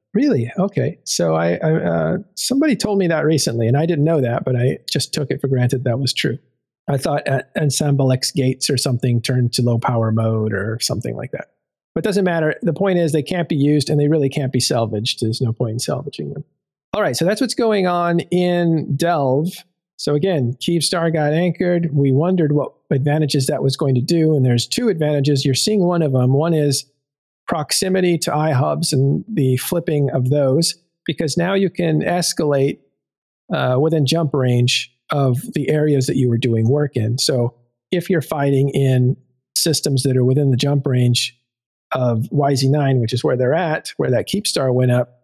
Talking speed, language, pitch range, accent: 200 wpm, English, 125-165 Hz, American